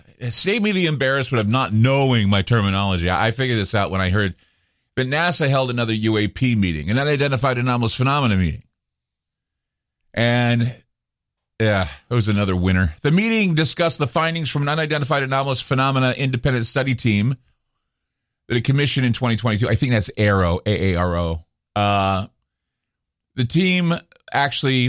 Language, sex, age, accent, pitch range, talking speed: English, male, 40-59, American, 100-145 Hz, 150 wpm